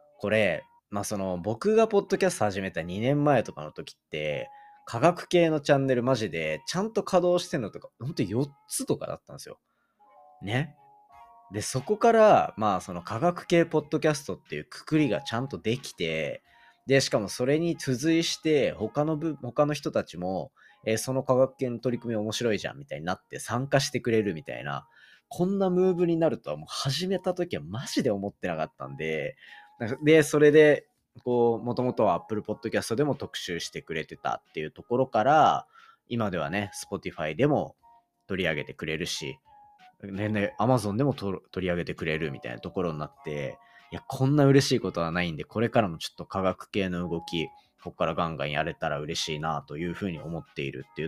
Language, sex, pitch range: Japanese, male, 95-155 Hz